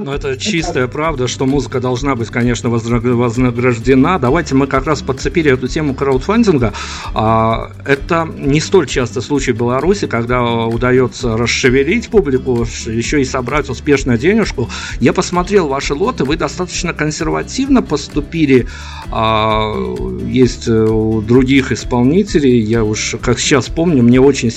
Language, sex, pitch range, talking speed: Russian, male, 120-140 Hz, 130 wpm